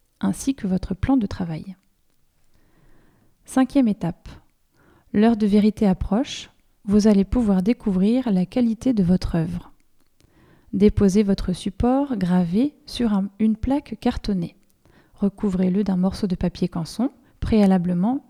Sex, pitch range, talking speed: female, 190-235 Hz, 120 wpm